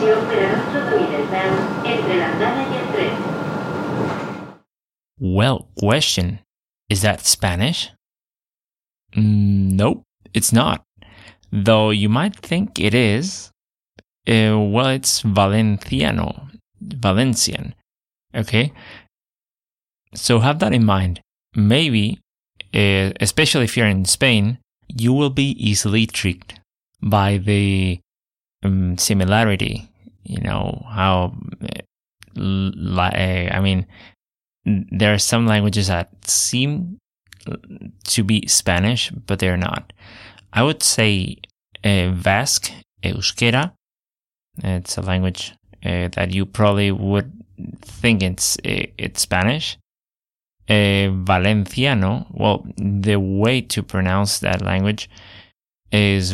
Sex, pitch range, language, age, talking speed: male, 95-115 Hz, English, 30-49, 95 wpm